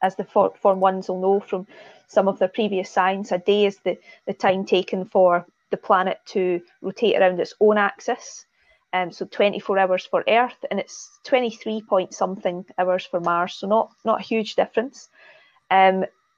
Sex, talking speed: female, 185 wpm